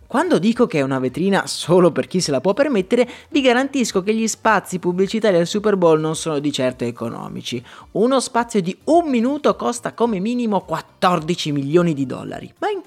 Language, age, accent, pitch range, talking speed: Italian, 30-49, native, 155-245 Hz, 190 wpm